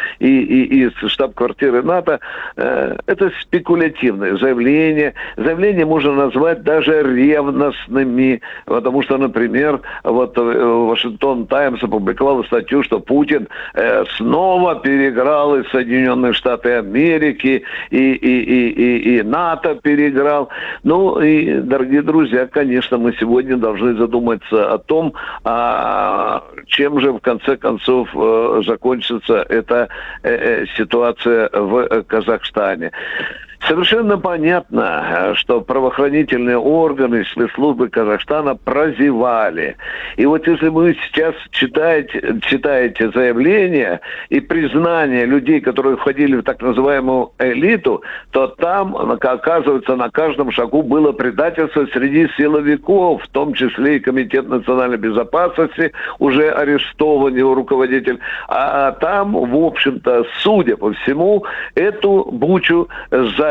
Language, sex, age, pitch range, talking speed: Russian, male, 60-79, 125-160 Hz, 110 wpm